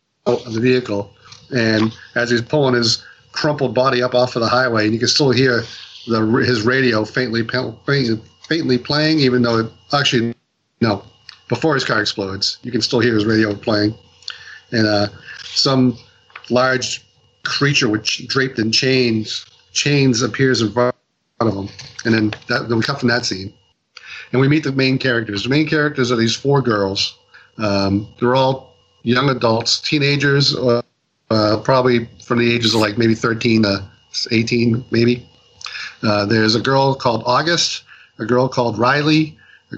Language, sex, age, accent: English, male, 40-59, American